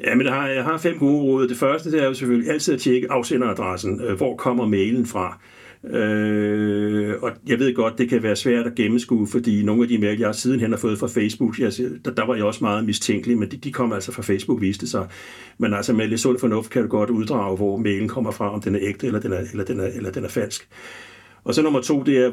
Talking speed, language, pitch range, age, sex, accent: 245 wpm, Danish, 105-130 Hz, 60-79, male, native